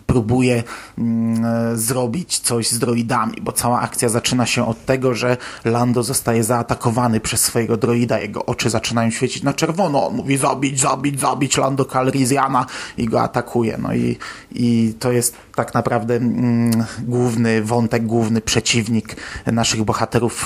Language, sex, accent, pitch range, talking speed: Polish, male, native, 120-135 Hz, 145 wpm